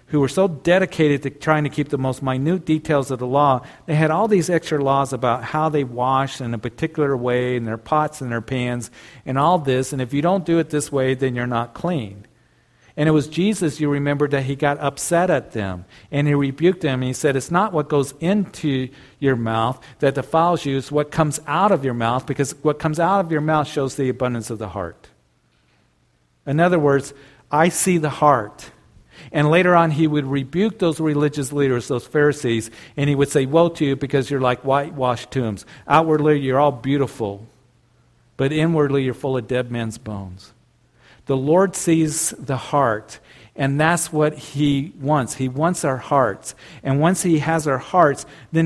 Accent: American